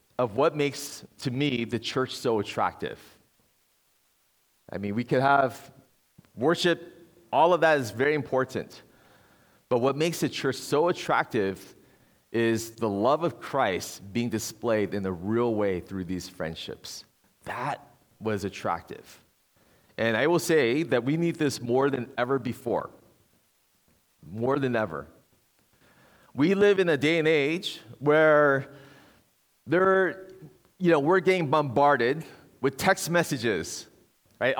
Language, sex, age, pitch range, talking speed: English, male, 30-49, 125-160 Hz, 135 wpm